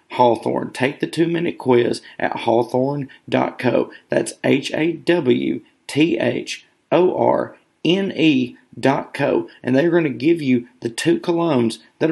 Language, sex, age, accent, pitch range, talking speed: English, male, 40-59, American, 115-165 Hz, 100 wpm